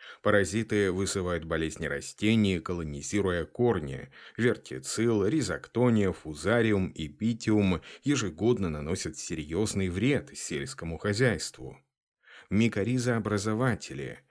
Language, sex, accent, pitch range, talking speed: Russian, male, native, 80-110 Hz, 70 wpm